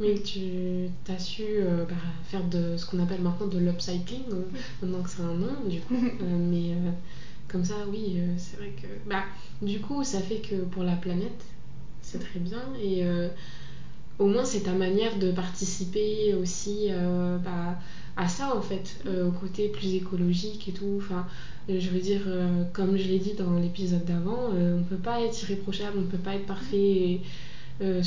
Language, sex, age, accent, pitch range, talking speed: French, female, 20-39, French, 175-195 Hz, 200 wpm